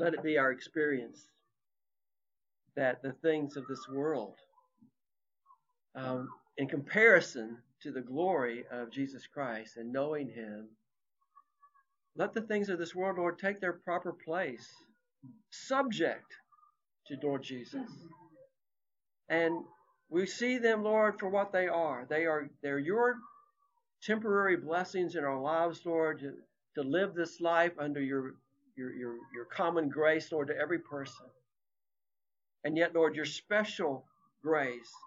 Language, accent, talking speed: English, American, 135 wpm